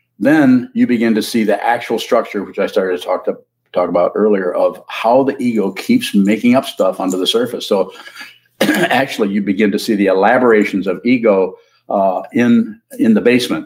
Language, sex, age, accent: English, male, 50-69, American